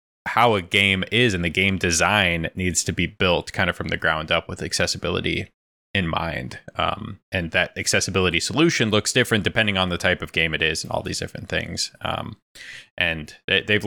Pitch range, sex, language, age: 85-105 Hz, male, English, 20-39